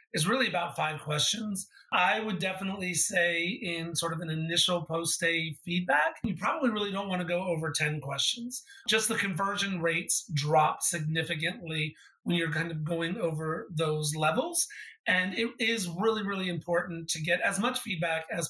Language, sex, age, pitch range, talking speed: English, male, 30-49, 165-195 Hz, 170 wpm